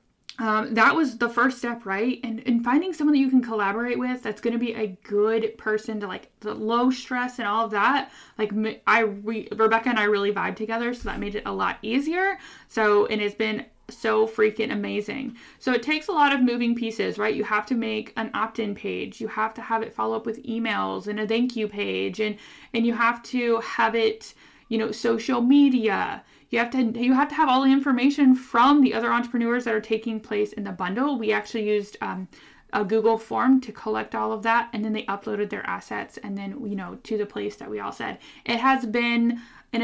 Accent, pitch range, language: American, 215-245 Hz, English